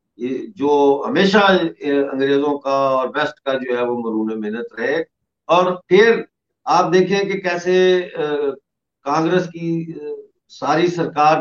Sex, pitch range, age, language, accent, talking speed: male, 140-190 Hz, 50-69, English, Indian, 120 wpm